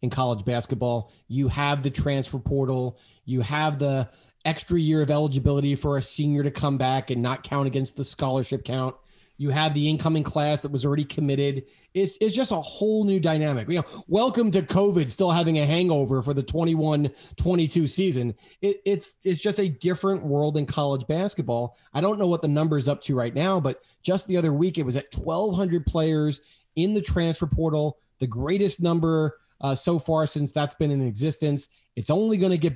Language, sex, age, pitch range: English, male, 30-49, 140-190 Hz